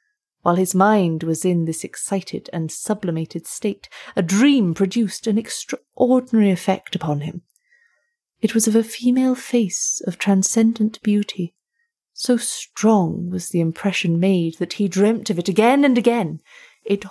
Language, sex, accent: English, female, British